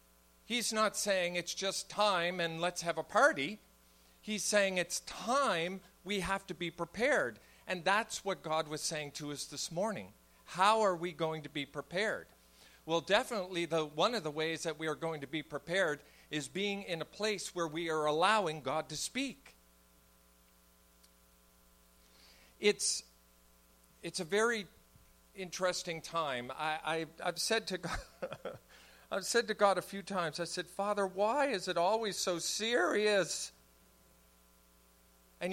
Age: 50-69